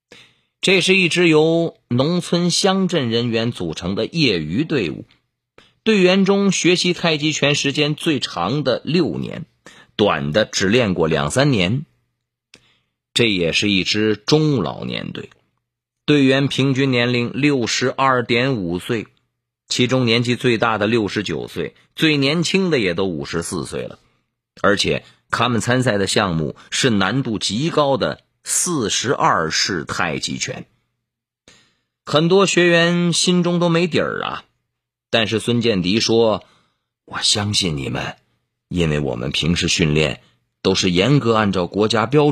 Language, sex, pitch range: Chinese, male, 105-155 Hz